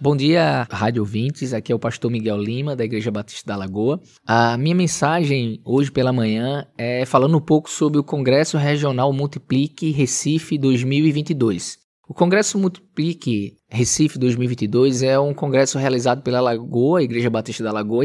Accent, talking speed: Brazilian, 160 wpm